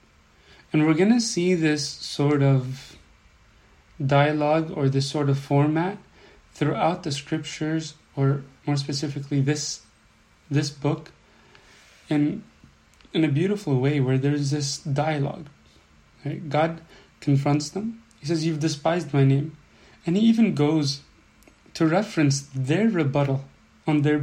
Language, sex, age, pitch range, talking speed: English, male, 30-49, 140-160 Hz, 125 wpm